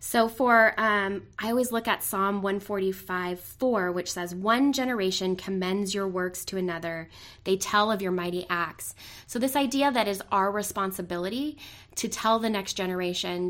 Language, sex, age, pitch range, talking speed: English, female, 20-39, 185-215 Hz, 165 wpm